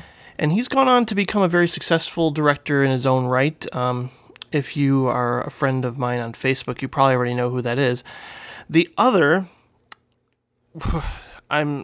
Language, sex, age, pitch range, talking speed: English, male, 30-49, 130-185 Hz, 170 wpm